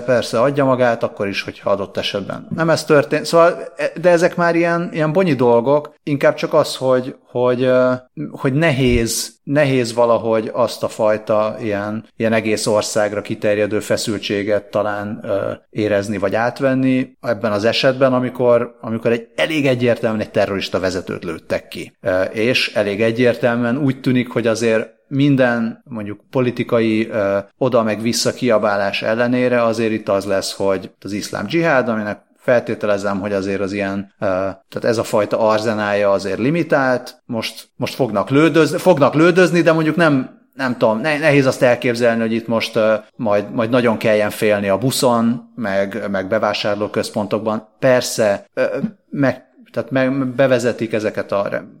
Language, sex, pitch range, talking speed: Hungarian, male, 105-135 Hz, 140 wpm